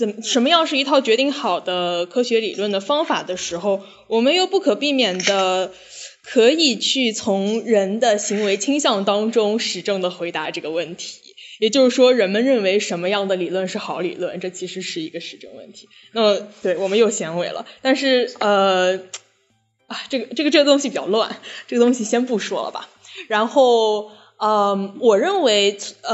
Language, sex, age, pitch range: Chinese, female, 10-29, 190-260 Hz